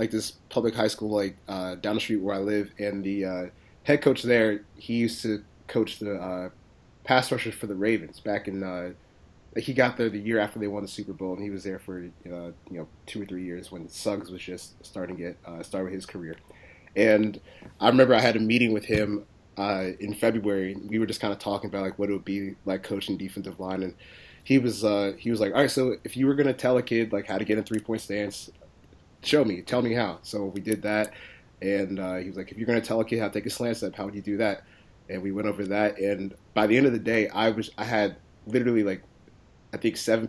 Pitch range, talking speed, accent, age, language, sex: 95-110 Hz, 250 wpm, American, 30-49, English, male